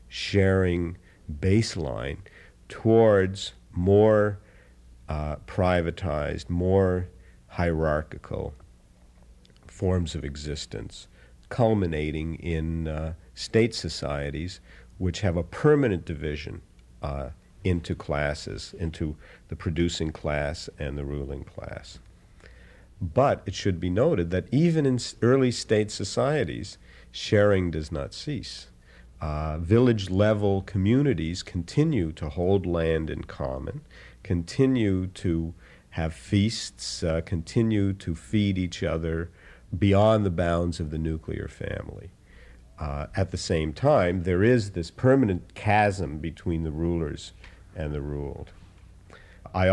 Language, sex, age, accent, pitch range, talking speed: English, male, 50-69, American, 80-100 Hz, 110 wpm